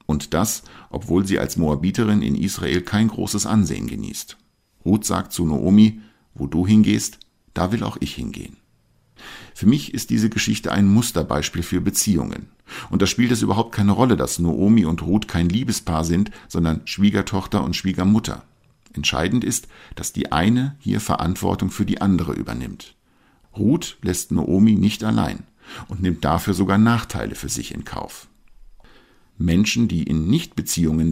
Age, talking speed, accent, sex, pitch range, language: 50-69, 155 wpm, German, male, 80-105 Hz, German